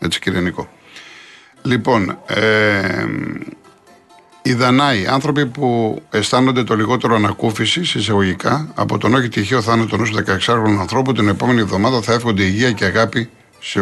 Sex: male